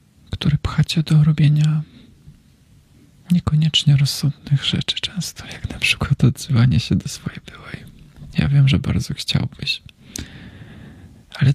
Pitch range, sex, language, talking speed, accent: 135-160 Hz, male, Polish, 105 wpm, native